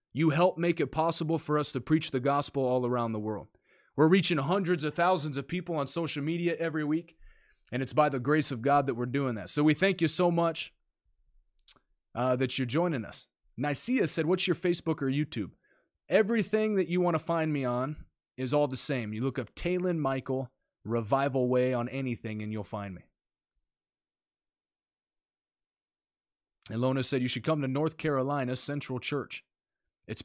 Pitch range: 120-160 Hz